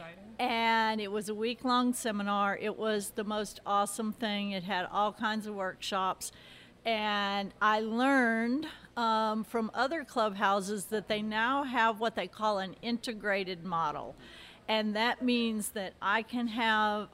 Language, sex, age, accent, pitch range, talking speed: English, female, 50-69, American, 200-235 Hz, 145 wpm